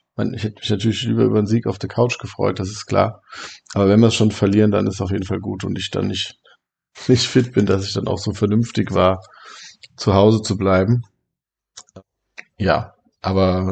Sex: male